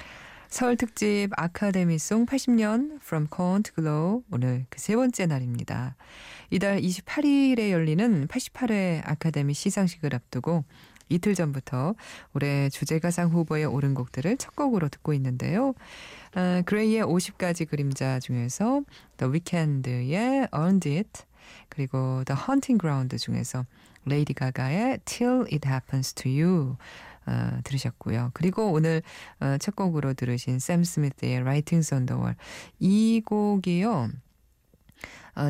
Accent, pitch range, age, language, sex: native, 130-195 Hz, 20-39, Korean, female